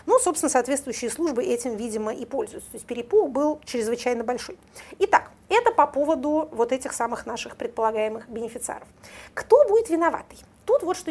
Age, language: 30-49, Russian